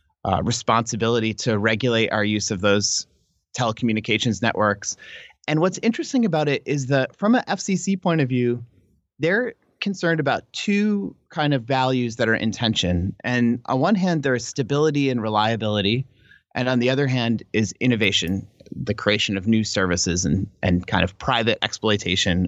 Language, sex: English, male